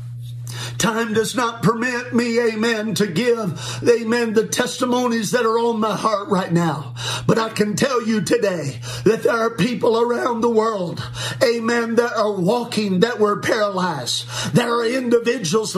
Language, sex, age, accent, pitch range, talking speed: English, male, 50-69, American, 200-245 Hz, 155 wpm